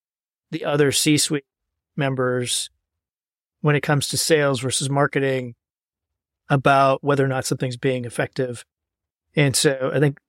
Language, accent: English, American